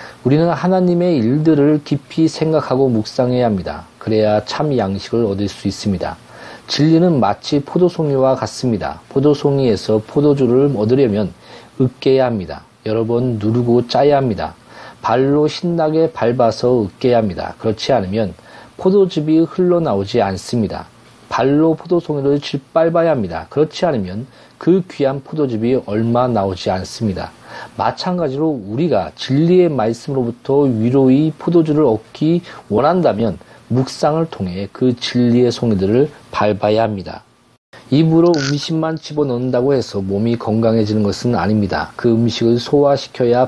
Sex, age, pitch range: male, 40-59, 110-150 Hz